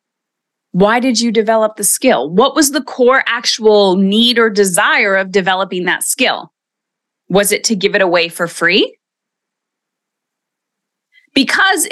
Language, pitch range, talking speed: English, 195-265 Hz, 135 wpm